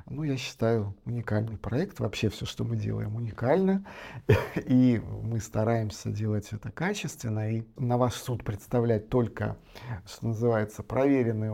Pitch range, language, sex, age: 105-125 Hz, Russian, male, 50-69